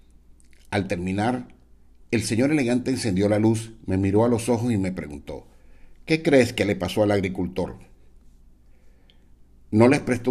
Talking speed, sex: 150 wpm, male